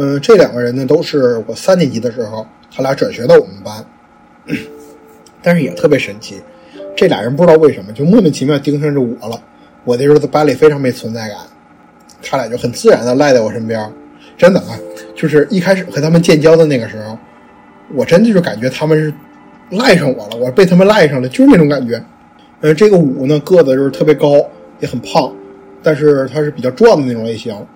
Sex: male